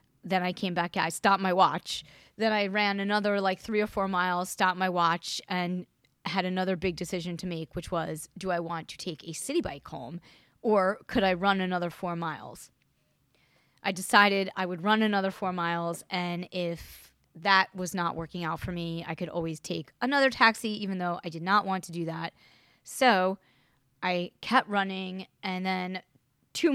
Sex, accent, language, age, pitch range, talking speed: female, American, English, 20-39, 170-195 Hz, 190 wpm